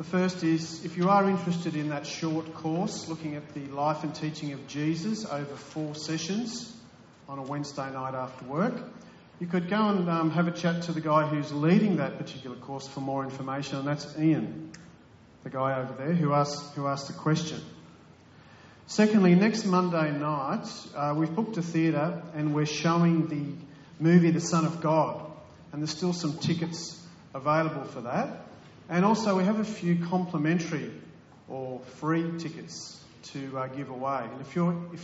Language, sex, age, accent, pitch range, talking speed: English, male, 40-59, Australian, 145-175 Hz, 175 wpm